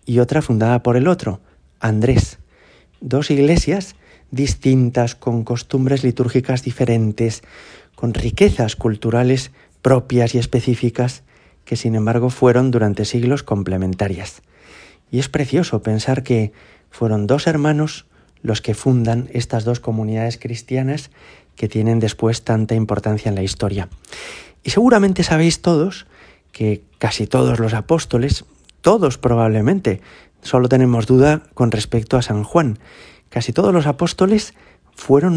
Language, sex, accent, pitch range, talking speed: Spanish, male, Spanish, 110-135 Hz, 125 wpm